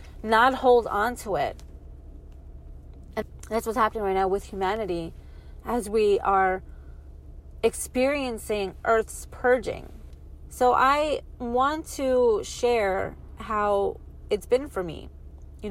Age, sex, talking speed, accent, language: 30-49, female, 110 wpm, American, English